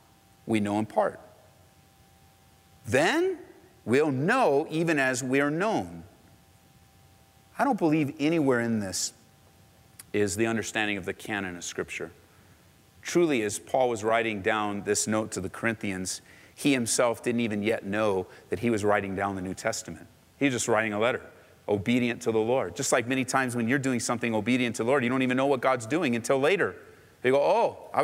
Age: 40-59